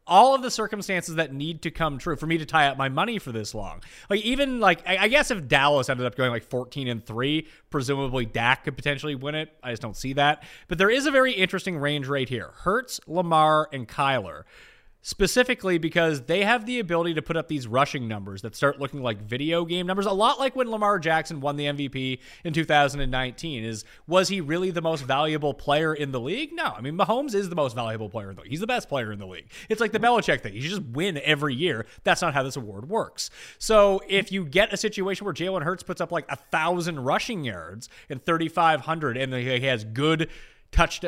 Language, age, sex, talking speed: English, 30-49, male, 230 wpm